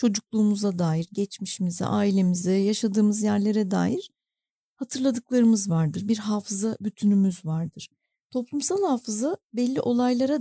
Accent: native